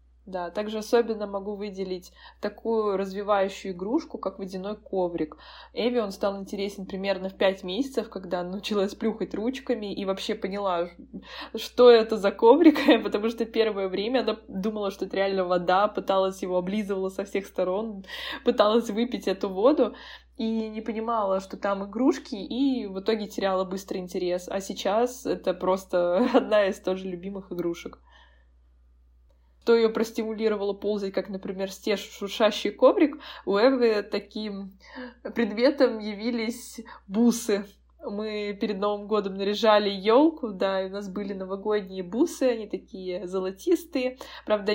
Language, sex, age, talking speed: Russian, female, 20-39, 140 wpm